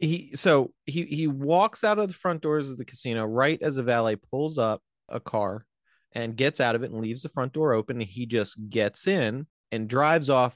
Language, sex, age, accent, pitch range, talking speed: English, male, 30-49, American, 110-140 Hz, 220 wpm